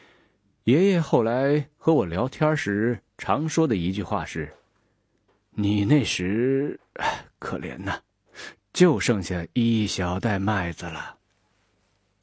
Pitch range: 95-140 Hz